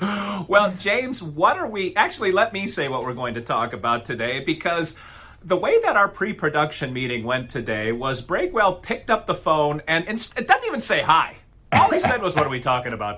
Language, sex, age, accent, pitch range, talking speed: English, male, 40-59, American, 125-180 Hz, 210 wpm